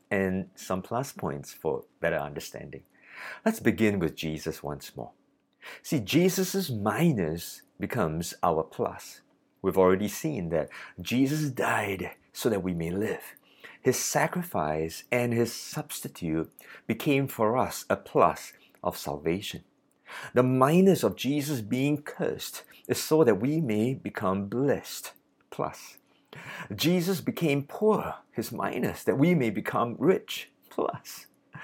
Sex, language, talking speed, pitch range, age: male, English, 125 wpm, 95-145 Hz, 50-69